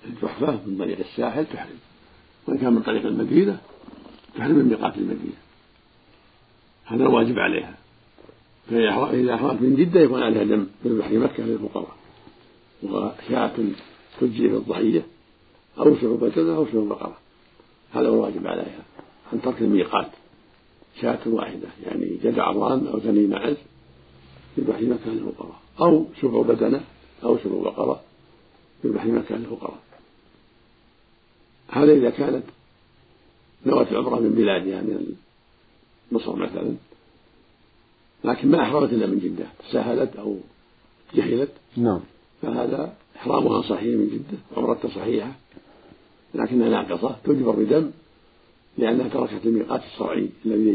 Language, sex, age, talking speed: Arabic, male, 50-69, 120 wpm